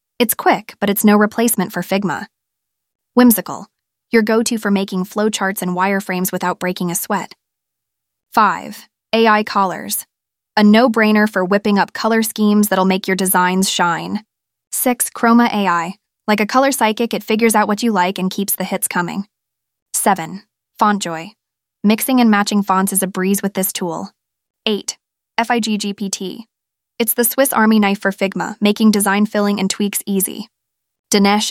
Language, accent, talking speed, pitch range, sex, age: English, American, 155 wpm, 185-220 Hz, female, 20-39